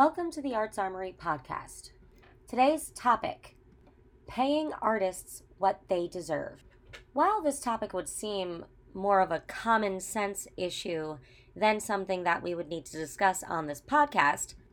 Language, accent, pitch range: English, American, 175-230 Hz